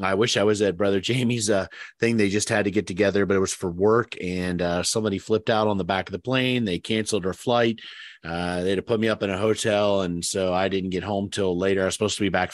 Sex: male